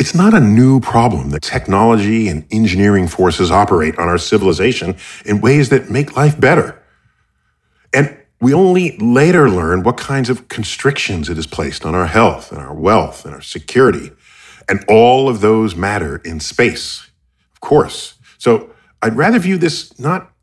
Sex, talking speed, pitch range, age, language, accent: male, 165 wpm, 95-150 Hz, 40-59, English, American